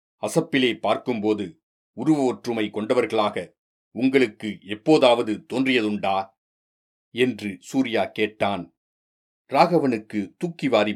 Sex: male